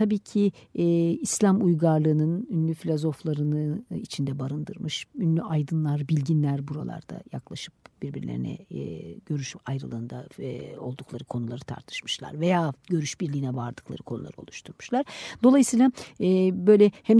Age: 50-69